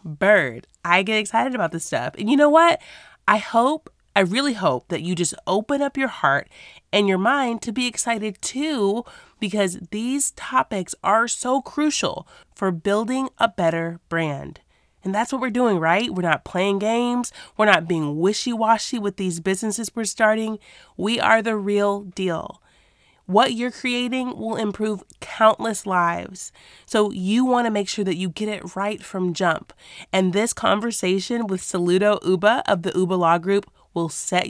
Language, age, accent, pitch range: English, 30-49, American, 180-225 Hz